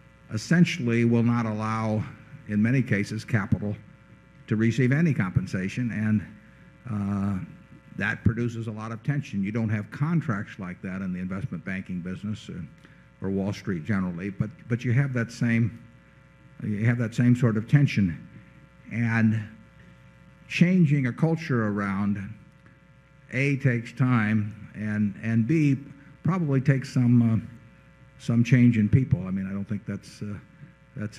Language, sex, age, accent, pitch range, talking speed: English, male, 50-69, American, 100-120 Hz, 145 wpm